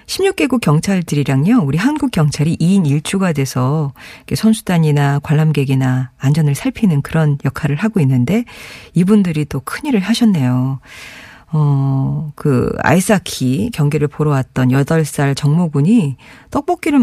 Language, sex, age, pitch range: Korean, female, 40-59, 140-205 Hz